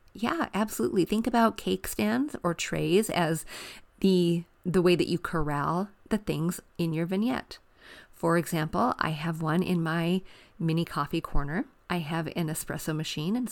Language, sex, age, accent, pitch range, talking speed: English, female, 30-49, American, 165-195 Hz, 160 wpm